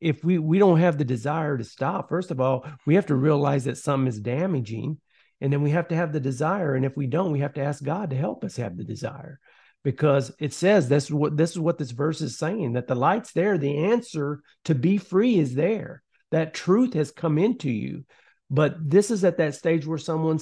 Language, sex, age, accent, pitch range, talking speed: English, male, 50-69, American, 140-165 Hz, 240 wpm